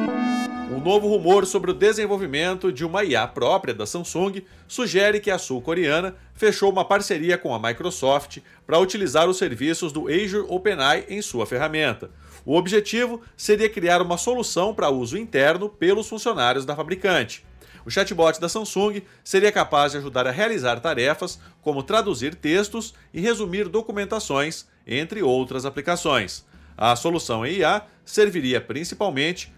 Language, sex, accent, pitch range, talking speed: Portuguese, male, Brazilian, 155-210 Hz, 140 wpm